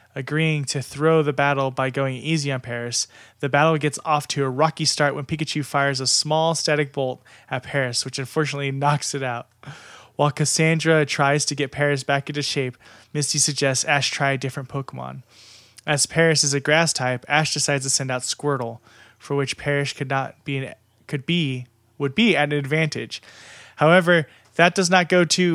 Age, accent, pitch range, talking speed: 20-39, American, 130-150 Hz, 190 wpm